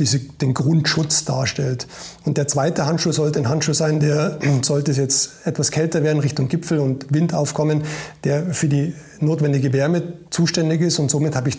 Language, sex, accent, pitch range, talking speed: German, male, German, 140-160 Hz, 175 wpm